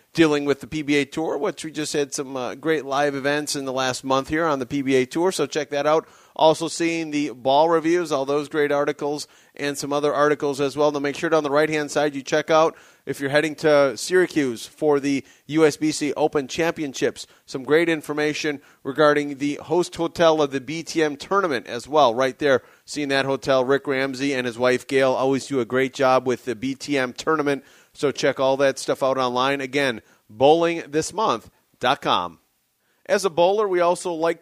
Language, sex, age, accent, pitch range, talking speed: English, male, 30-49, American, 145-180 Hz, 195 wpm